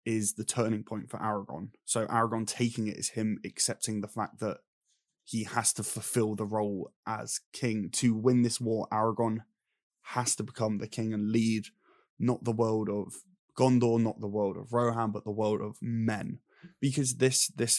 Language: English